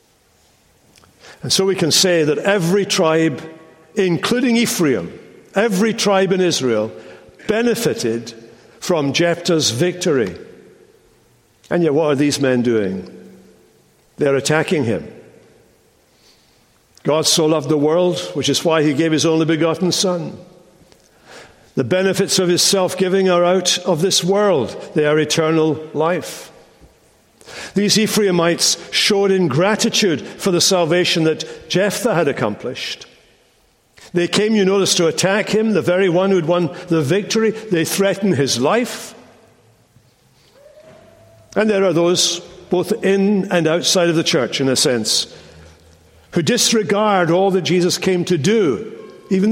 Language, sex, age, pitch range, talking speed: English, male, 60-79, 155-195 Hz, 130 wpm